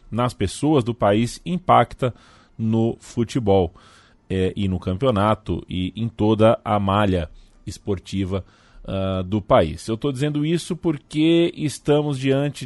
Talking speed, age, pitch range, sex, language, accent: 125 wpm, 20-39, 95-120 Hz, male, Portuguese, Brazilian